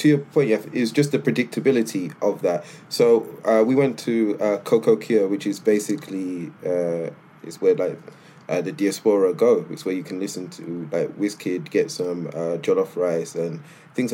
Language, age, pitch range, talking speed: English, 20-39, 110-155 Hz, 185 wpm